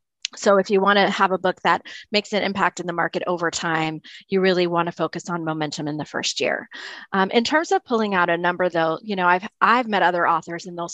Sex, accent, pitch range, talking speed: female, American, 170-215 Hz, 250 wpm